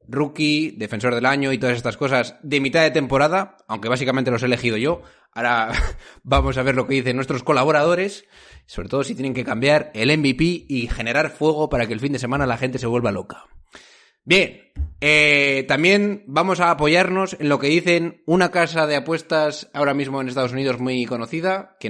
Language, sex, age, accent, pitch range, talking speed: Spanish, male, 20-39, Spanish, 125-185 Hz, 195 wpm